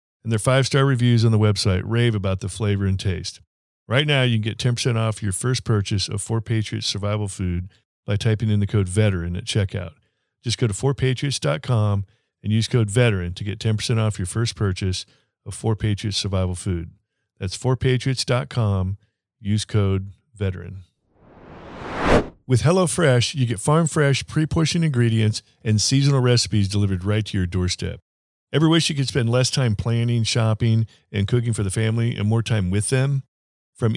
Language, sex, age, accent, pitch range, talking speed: English, male, 50-69, American, 100-130 Hz, 165 wpm